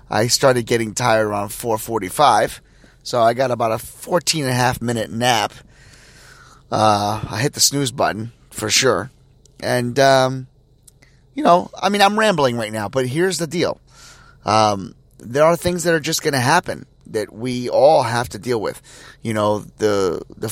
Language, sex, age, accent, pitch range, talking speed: English, male, 30-49, American, 105-135 Hz, 175 wpm